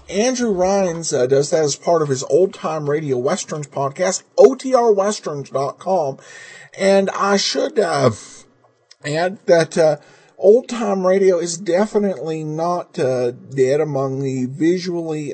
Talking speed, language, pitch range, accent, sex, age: 130 wpm, English, 135-190 Hz, American, male, 50-69